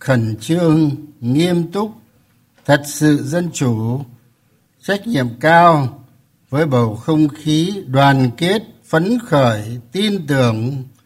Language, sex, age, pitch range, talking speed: Vietnamese, male, 60-79, 130-155 Hz, 115 wpm